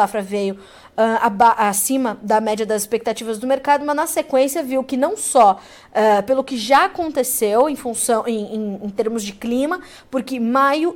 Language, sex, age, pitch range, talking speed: Portuguese, female, 20-39, 220-275 Hz, 155 wpm